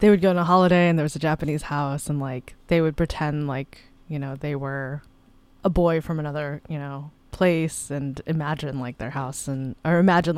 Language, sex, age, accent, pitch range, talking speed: English, female, 20-39, American, 145-175 Hz, 215 wpm